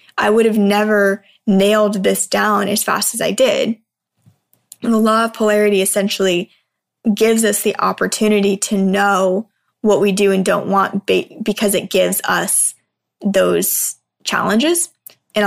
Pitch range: 200-230 Hz